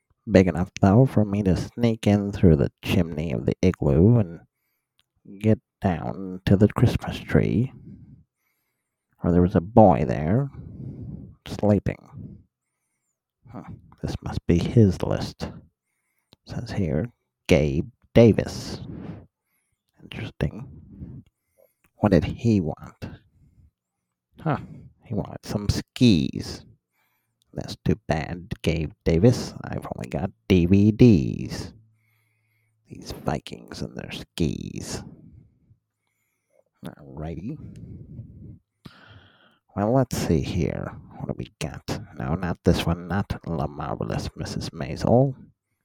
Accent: American